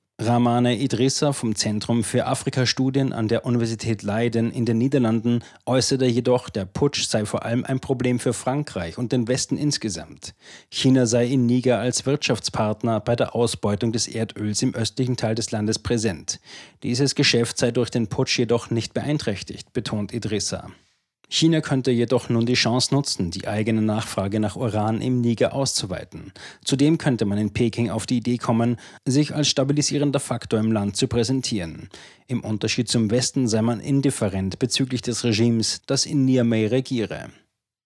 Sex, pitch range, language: male, 110-130 Hz, German